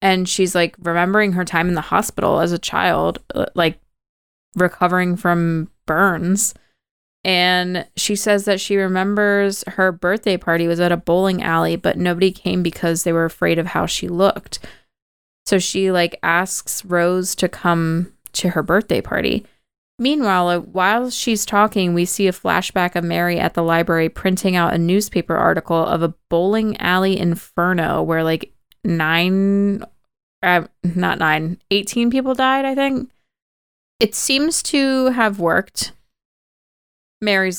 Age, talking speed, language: 20-39, 145 wpm, English